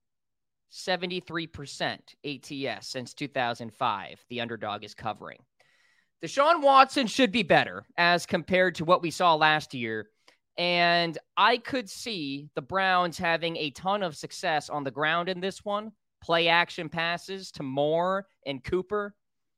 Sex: male